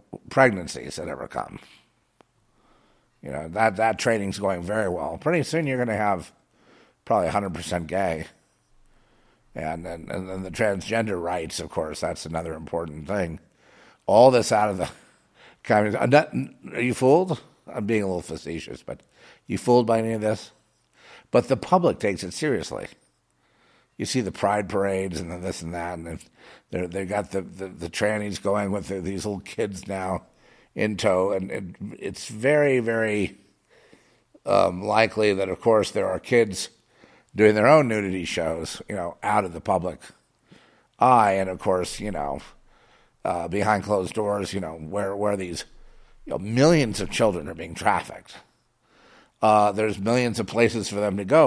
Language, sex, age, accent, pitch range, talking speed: English, male, 50-69, American, 90-110 Hz, 160 wpm